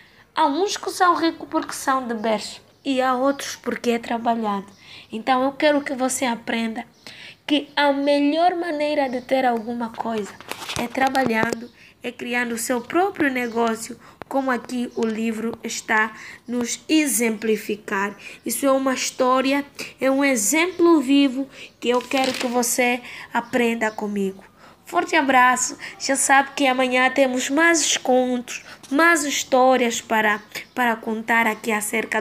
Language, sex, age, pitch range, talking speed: Portuguese, female, 20-39, 225-290 Hz, 140 wpm